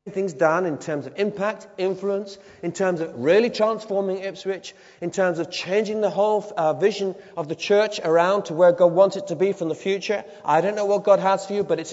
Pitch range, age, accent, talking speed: 150-195 Hz, 30-49, British, 225 wpm